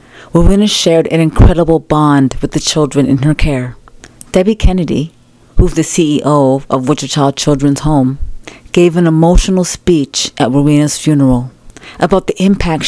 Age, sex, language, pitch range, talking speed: 30-49, female, English, 140-170 Hz, 140 wpm